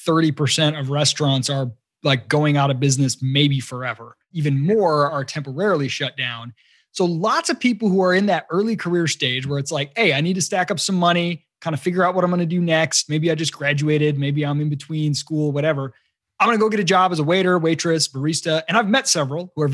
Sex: male